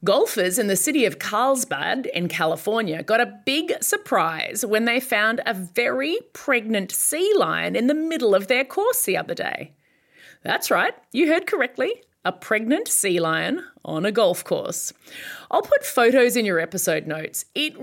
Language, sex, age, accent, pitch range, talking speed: English, female, 30-49, Australian, 185-280 Hz, 170 wpm